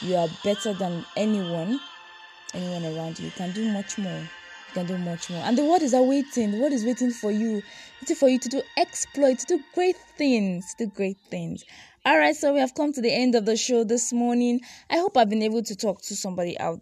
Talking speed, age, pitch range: 230 wpm, 20-39, 180-245 Hz